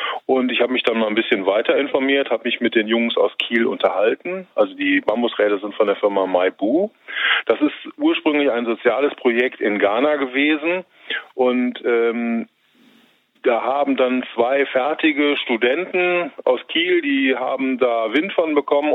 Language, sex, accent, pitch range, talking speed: German, male, German, 110-145 Hz, 160 wpm